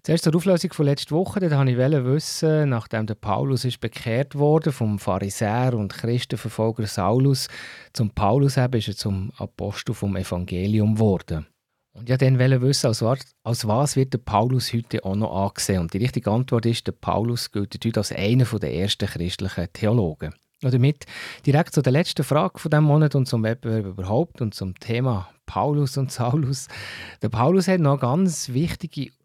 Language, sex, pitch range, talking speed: German, male, 105-140 Hz, 180 wpm